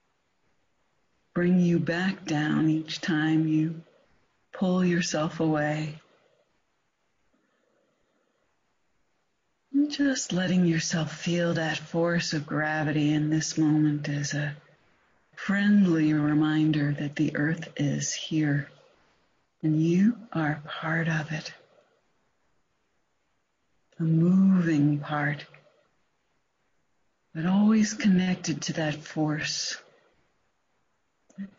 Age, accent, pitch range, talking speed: 60-79, American, 150-190 Hz, 90 wpm